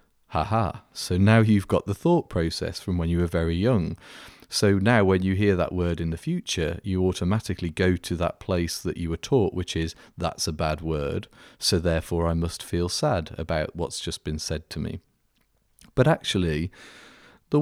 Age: 30-49